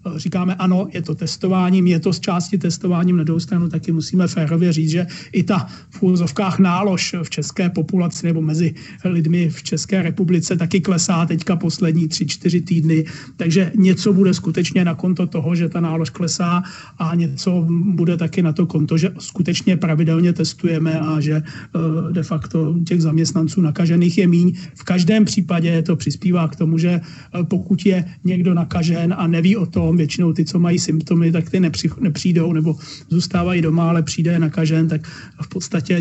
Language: Czech